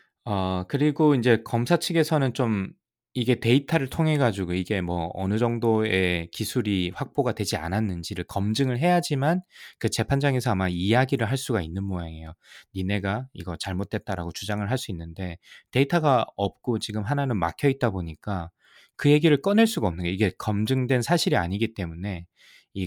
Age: 20-39